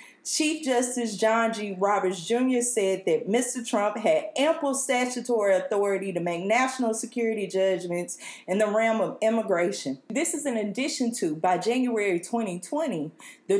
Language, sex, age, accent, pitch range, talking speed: English, female, 40-59, American, 195-255 Hz, 145 wpm